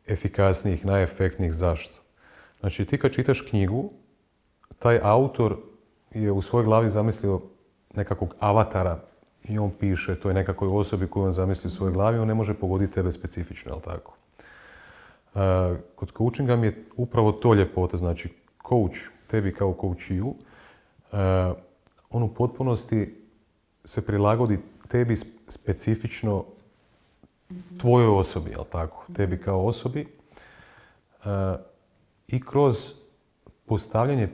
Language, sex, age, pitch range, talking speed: Croatian, male, 40-59, 95-120 Hz, 115 wpm